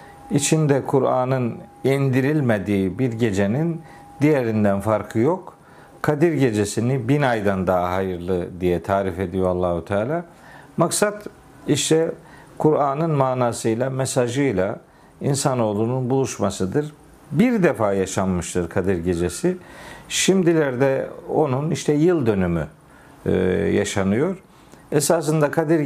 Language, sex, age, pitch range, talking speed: Turkish, male, 50-69, 100-150 Hz, 90 wpm